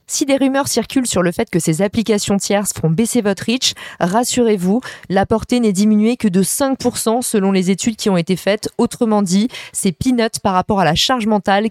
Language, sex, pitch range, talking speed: French, female, 185-240 Hz, 205 wpm